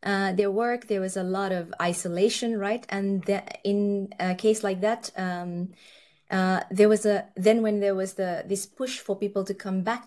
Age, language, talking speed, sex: 20-39, English, 205 wpm, female